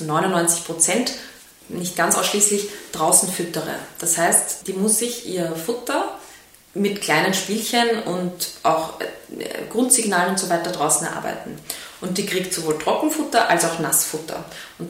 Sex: female